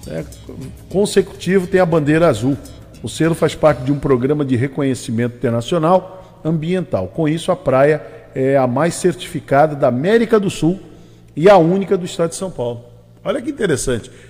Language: Portuguese